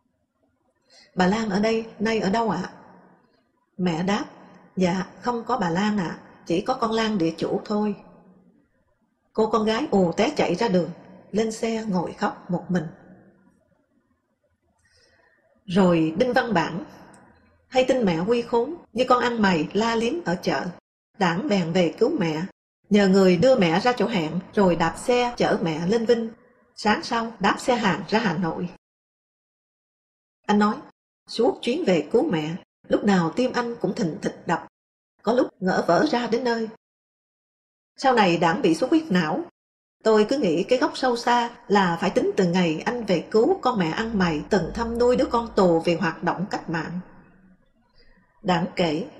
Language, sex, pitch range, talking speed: English, female, 180-235 Hz, 175 wpm